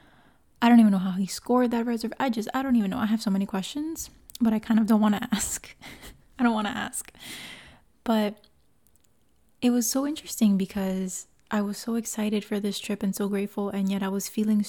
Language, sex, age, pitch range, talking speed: English, female, 20-39, 200-240 Hz, 220 wpm